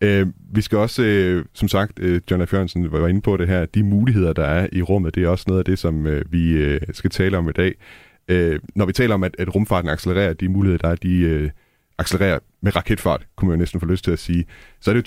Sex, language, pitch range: male, Danish, 85-100 Hz